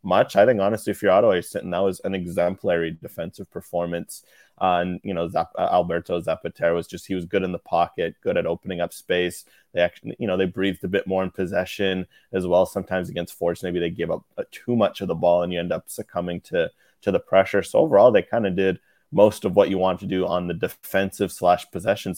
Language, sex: English, male